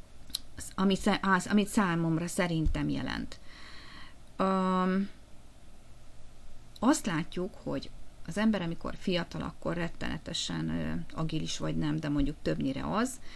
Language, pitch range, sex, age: Hungarian, 165-200 Hz, female, 30-49